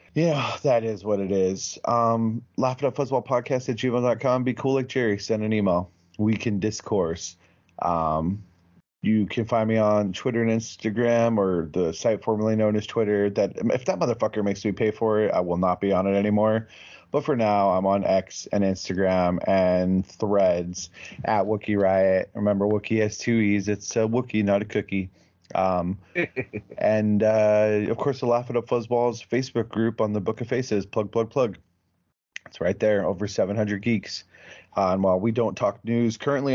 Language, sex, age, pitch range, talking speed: English, male, 30-49, 100-120 Hz, 185 wpm